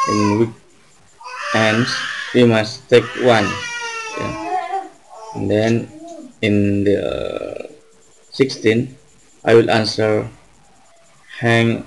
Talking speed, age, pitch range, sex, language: 85 wpm, 30-49, 110-130 Hz, male, Indonesian